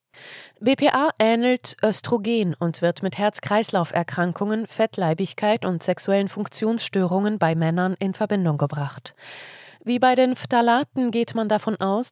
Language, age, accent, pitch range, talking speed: German, 20-39, German, 175-225 Hz, 120 wpm